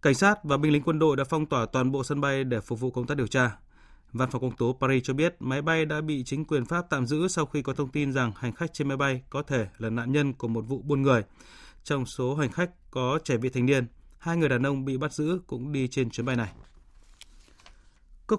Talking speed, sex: 265 wpm, male